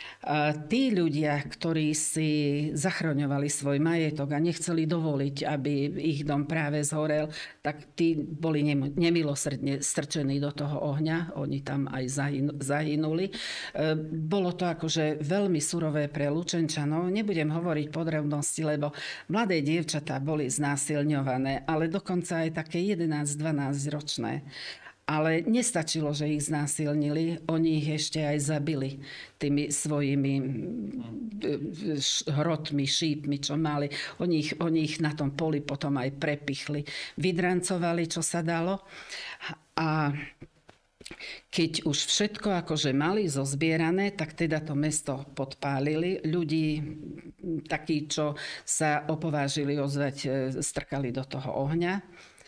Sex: female